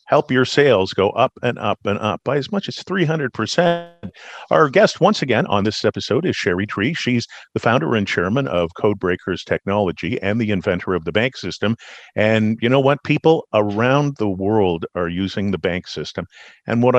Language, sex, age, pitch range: English, male, 50-69, 100-140 Hz